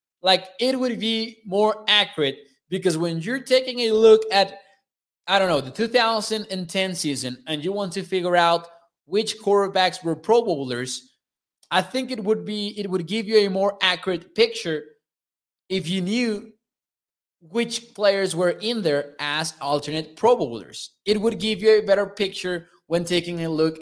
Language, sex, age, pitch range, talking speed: English, male, 20-39, 160-215 Hz, 165 wpm